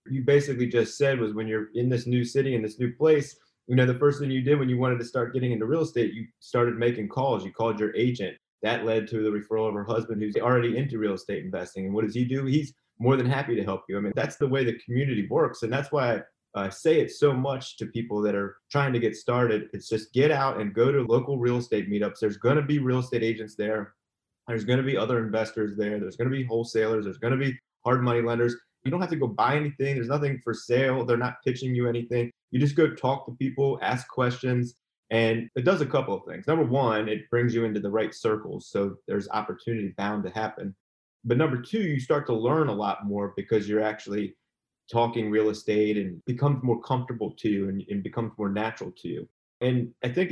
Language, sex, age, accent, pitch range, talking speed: English, male, 20-39, American, 110-130 Hz, 245 wpm